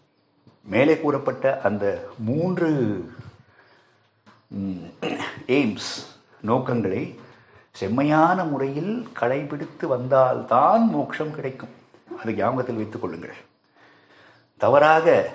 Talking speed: 65 wpm